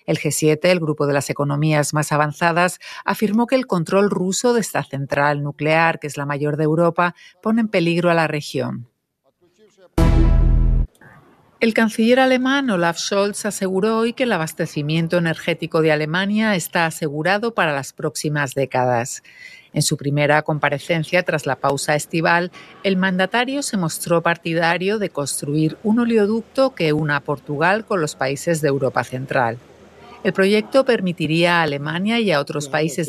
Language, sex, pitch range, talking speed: Spanish, female, 145-190 Hz, 150 wpm